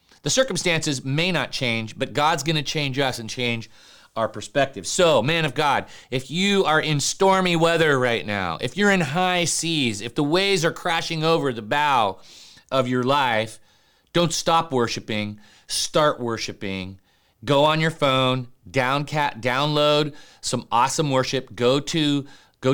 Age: 40-59